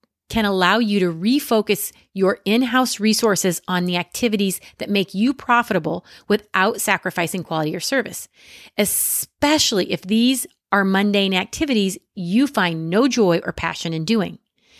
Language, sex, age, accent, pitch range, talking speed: English, female, 30-49, American, 175-235 Hz, 140 wpm